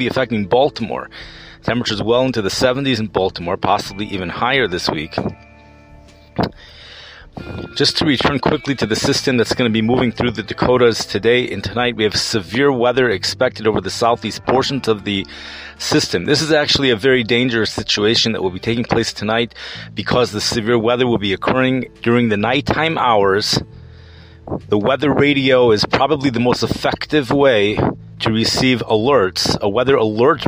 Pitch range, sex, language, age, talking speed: 110-135 Hz, male, English, 30-49, 165 wpm